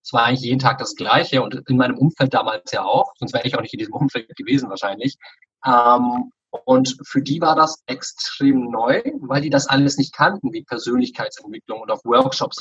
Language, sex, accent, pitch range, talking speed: German, male, German, 130-160 Hz, 200 wpm